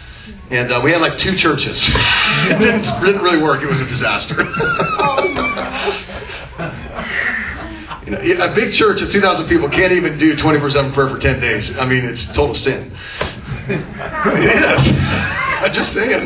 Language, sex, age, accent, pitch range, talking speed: English, male, 40-59, American, 115-160 Hz, 145 wpm